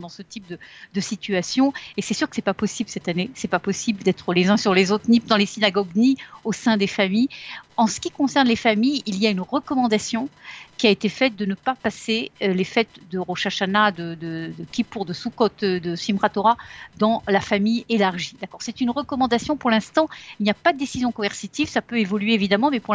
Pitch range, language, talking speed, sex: 195-240 Hz, Russian, 235 wpm, female